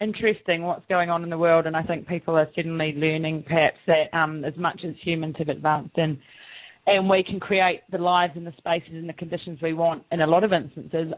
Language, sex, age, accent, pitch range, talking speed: English, female, 30-49, Australian, 160-180 Hz, 230 wpm